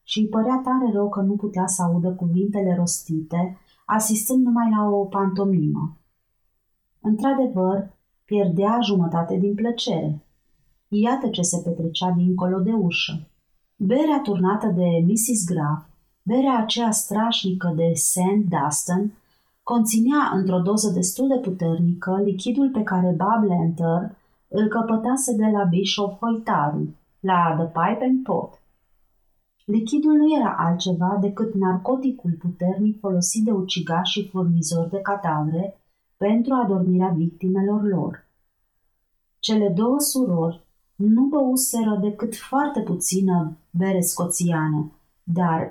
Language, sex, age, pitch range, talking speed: Romanian, female, 30-49, 175-225 Hz, 120 wpm